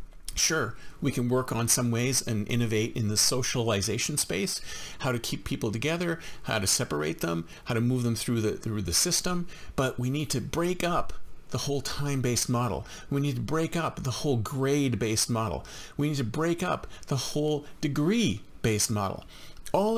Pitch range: 120-165 Hz